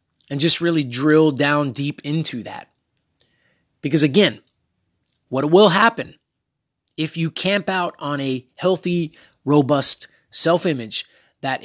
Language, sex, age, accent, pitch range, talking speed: English, male, 30-49, American, 130-170 Hz, 120 wpm